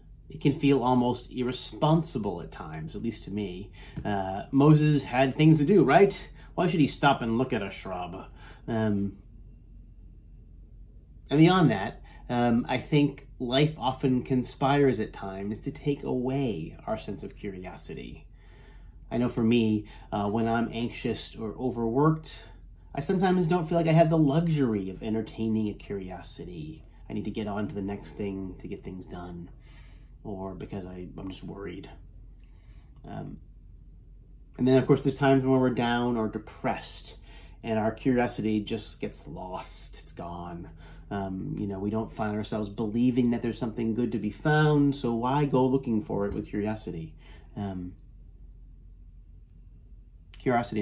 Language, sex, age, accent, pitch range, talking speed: English, male, 30-49, American, 100-130 Hz, 155 wpm